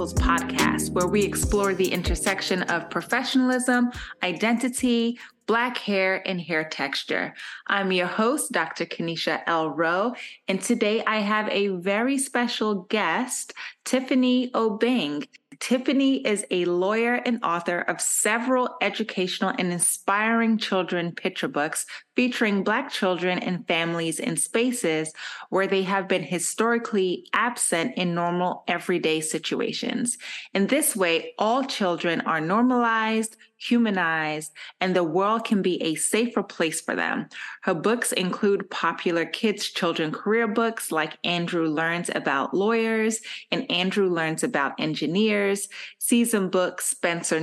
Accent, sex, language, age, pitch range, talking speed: American, female, English, 20-39, 175-230 Hz, 130 wpm